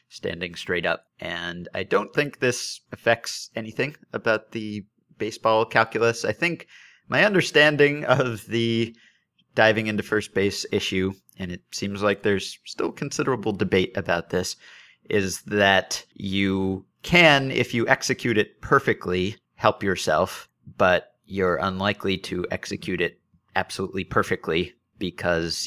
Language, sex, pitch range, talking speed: English, male, 90-110 Hz, 130 wpm